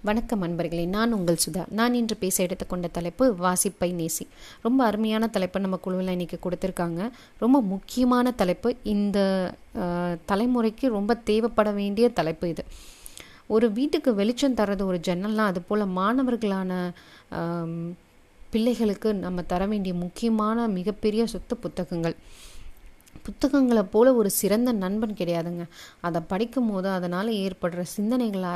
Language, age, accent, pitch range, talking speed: Tamil, 30-49, native, 175-225 Hz, 120 wpm